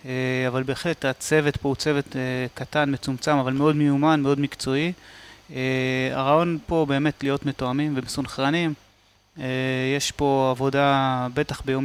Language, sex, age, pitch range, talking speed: Hebrew, male, 30-49, 130-150 Hz, 140 wpm